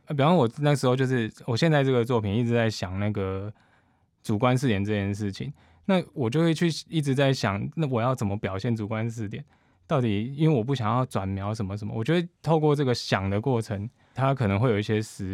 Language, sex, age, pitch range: Chinese, male, 20-39, 105-130 Hz